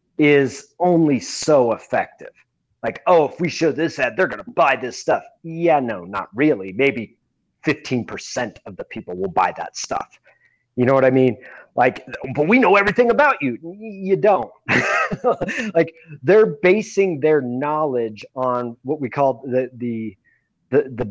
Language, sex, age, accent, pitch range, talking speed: English, male, 30-49, American, 115-155 Hz, 160 wpm